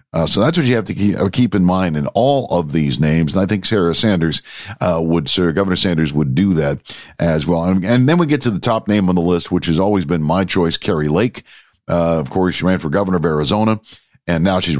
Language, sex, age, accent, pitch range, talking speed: English, male, 50-69, American, 85-105 Hz, 260 wpm